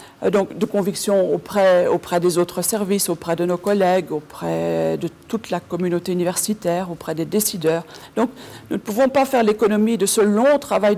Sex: female